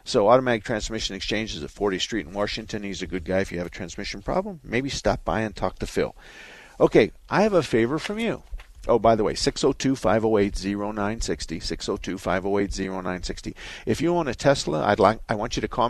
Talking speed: 195 wpm